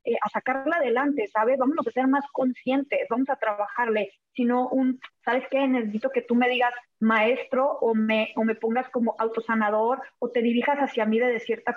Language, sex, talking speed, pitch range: Spanish, female, 195 wpm, 220-260 Hz